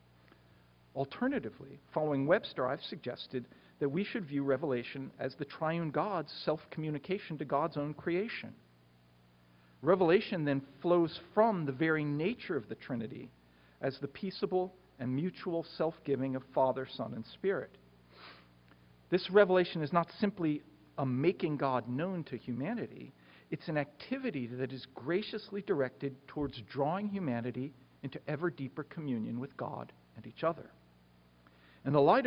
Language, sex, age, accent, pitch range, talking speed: English, male, 50-69, American, 115-170 Hz, 135 wpm